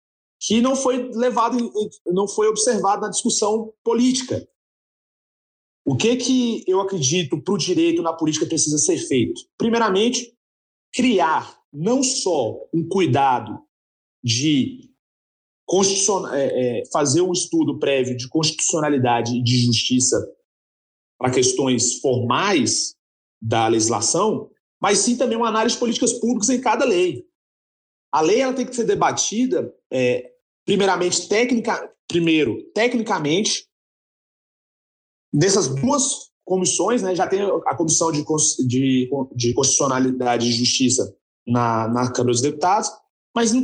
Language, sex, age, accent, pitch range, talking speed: Portuguese, male, 40-59, Brazilian, 150-250 Hz, 115 wpm